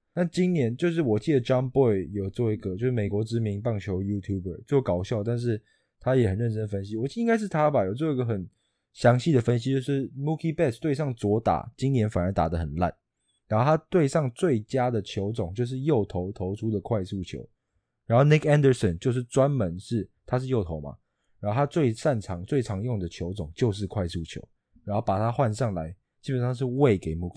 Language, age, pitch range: English, 20-39, 95-130 Hz